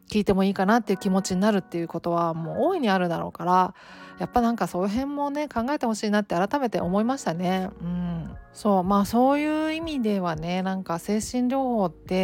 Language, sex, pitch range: Japanese, female, 175-245 Hz